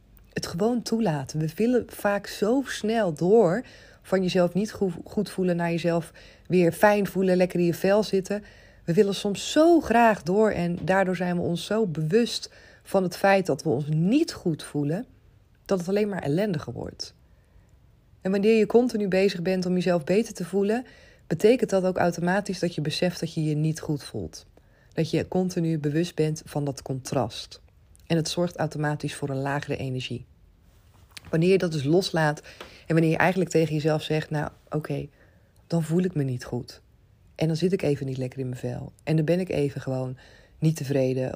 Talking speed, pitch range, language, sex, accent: 190 wpm, 140-185 Hz, Dutch, female, Dutch